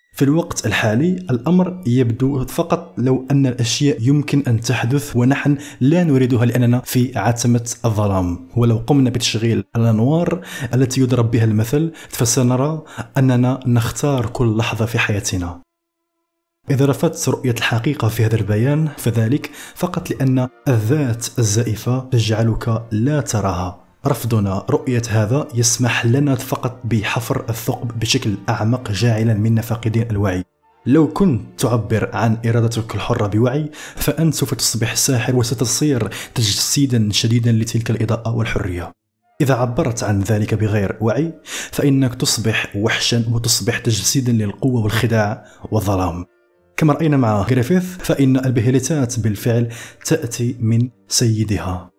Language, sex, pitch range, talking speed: Arabic, male, 110-135 Hz, 120 wpm